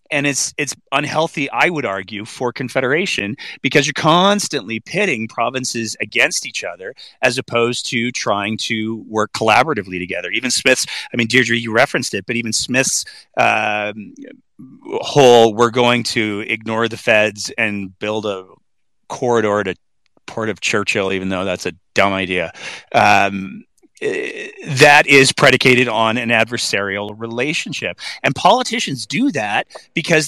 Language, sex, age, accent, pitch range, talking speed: English, male, 30-49, American, 110-160 Hz, 145 wpm